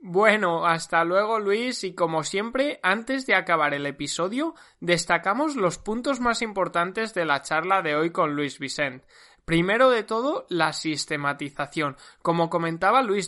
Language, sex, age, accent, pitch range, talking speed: Spanish, male, 20-39, Spanish, 155-210 Hz, 150 wpm